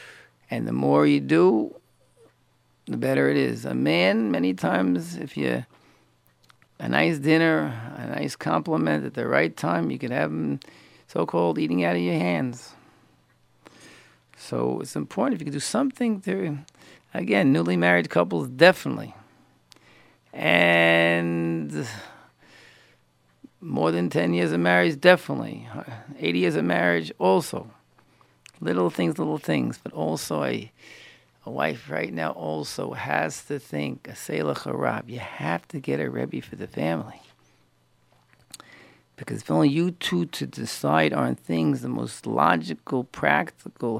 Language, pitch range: English, 75-110 Hz